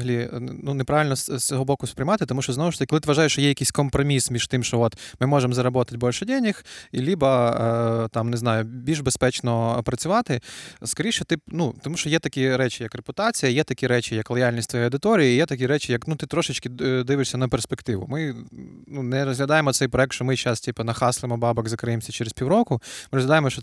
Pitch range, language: 120-155 Hz, Ukrainian